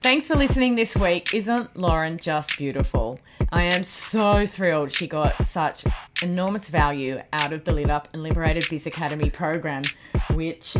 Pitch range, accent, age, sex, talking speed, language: 165-225 Hz, Australian, 30-49, female, 160 wpm, English